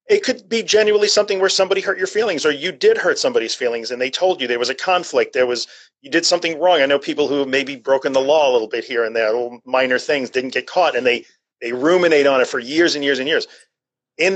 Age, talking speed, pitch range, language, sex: 40-59, 270 wpm, 130-180 Hz, English, male